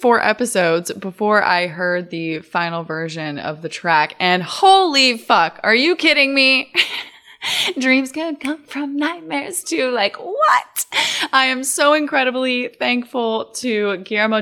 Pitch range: 180-235 Hz